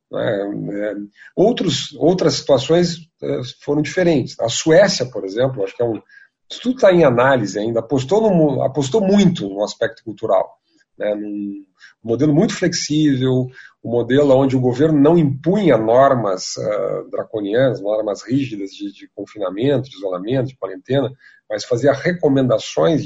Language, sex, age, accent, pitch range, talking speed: Portuguese, male, 50-69, Brazilian, 120-170 Hz, 145 wpm